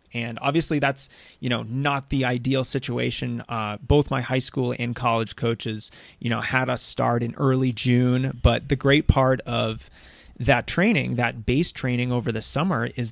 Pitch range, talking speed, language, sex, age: 115-140 Hz, 180 wpm, English, male, 30-49